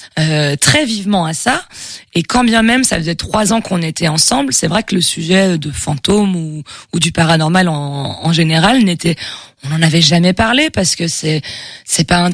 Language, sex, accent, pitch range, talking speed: French, female, French, 155-195 Hz, 205 wpm